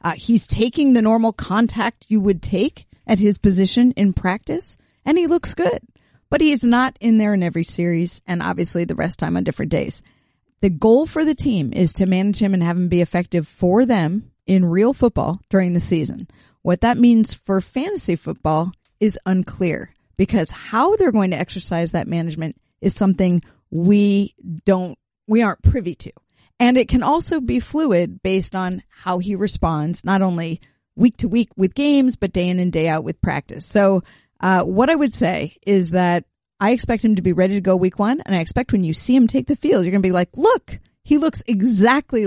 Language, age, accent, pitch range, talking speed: English, 40-59, American, 180-230 Hz, 205 wpm